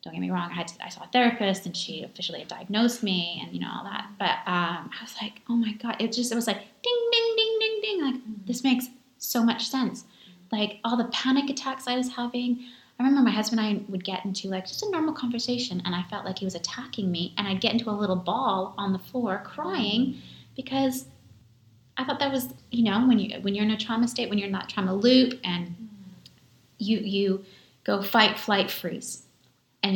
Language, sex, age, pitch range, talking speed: English, female, 20-39, 180-235 Hz, 230 wpm